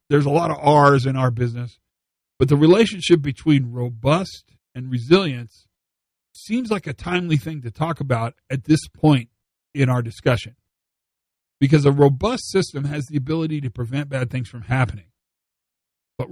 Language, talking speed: English, 160 wpm